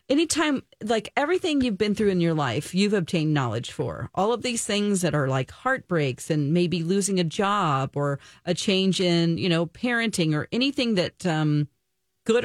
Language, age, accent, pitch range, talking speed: English, 40-59, American, 165-215 Hz, 185 wpm